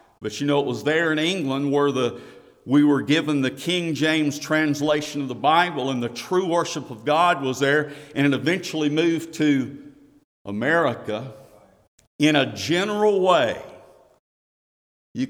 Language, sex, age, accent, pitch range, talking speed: English, male, 50-69, American, 125-155 Hz, 150 wpm